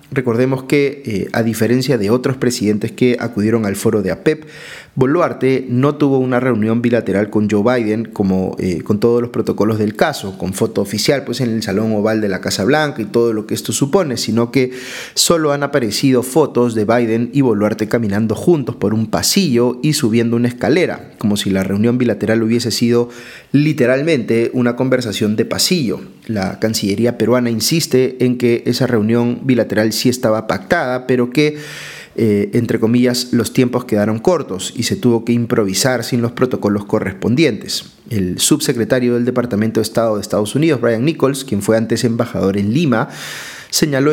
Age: 30-49